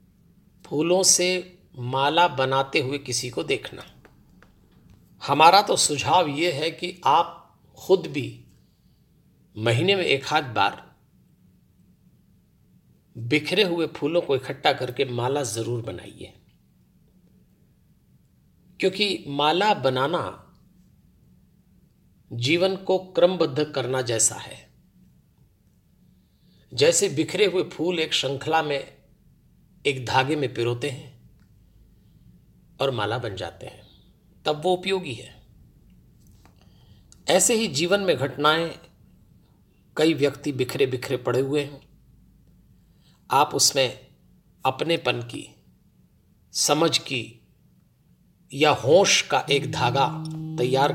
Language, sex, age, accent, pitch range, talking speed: Hindi, male, 50-69, native, 125-165 Hz, 100 wpm